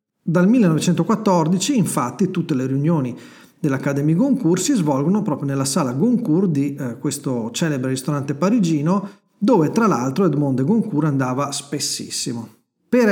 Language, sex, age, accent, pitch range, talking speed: Italian, male, 40-59, native, 135-180 Hz, 135 wpm